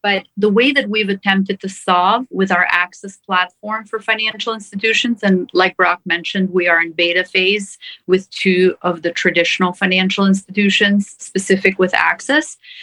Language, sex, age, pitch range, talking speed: English, female, 40-59, 175-205 Hz, 160 wpm